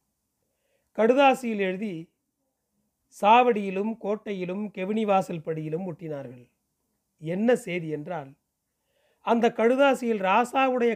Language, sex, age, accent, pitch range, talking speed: Tamil, male, 40-59, native, 165-220 Hz, 70 wpm